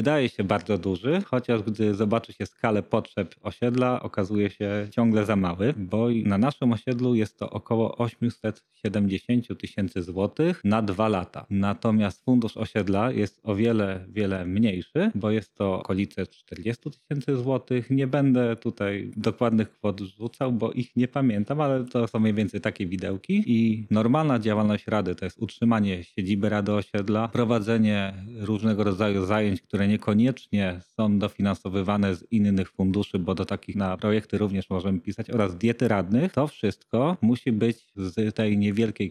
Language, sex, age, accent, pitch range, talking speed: Polish, male, 30-49, native, 100-115 Hz, 155 wpm